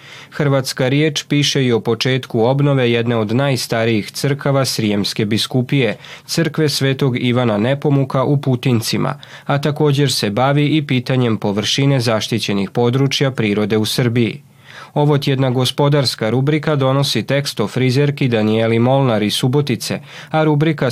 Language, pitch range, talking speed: Croatian, 115-145 Hz, 125 wpm